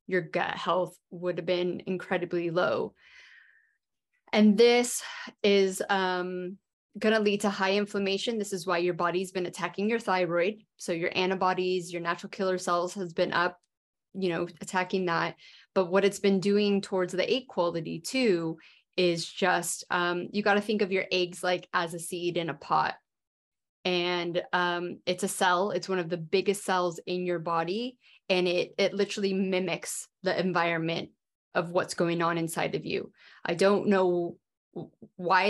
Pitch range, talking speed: 180-200 Hz, 165 wpm